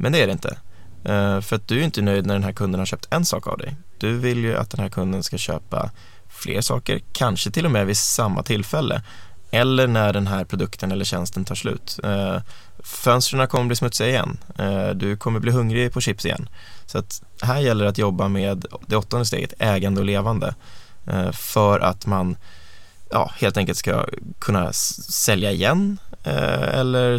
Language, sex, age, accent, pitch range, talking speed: Swedish, male, 20-39, native, 95-120 Hz, 185 wpm